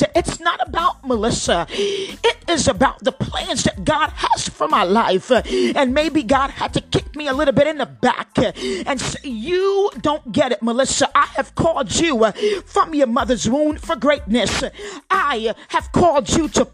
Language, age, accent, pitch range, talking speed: English, 40-59, American, 255-335 Hz, 175 wpm